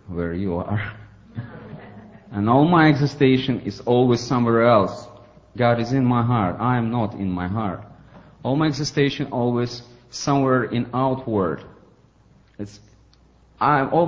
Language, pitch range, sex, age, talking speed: English, 95-120 Hz, male, 40-59, 135 wpm